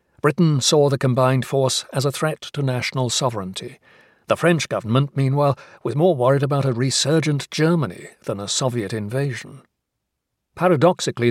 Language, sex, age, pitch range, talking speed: English, male, 60-79, 120-145 Hz, 145 wpm